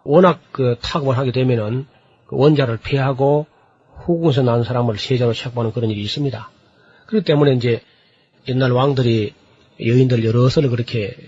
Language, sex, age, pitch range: Korean, male, 40-59, 120-150 Hz